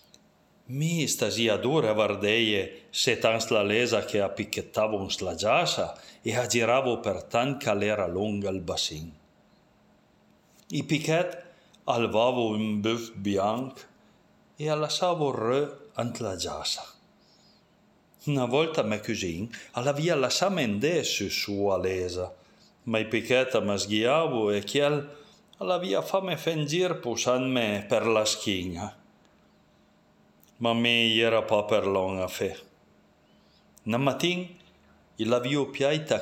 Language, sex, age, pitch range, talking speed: Italian, male, 40-59, 105-145 Hz, 120 wpm